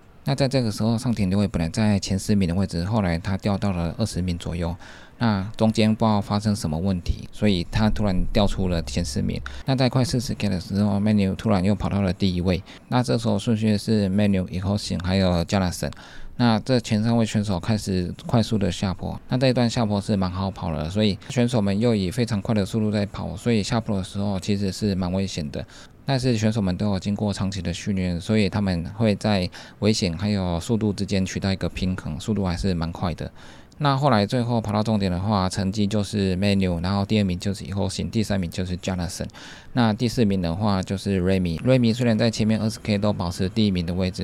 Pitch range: 95-110 Hz